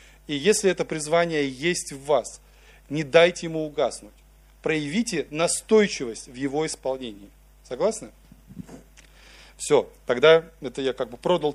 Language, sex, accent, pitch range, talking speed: Russian, male, native, 130-165 Hz, 125 wpm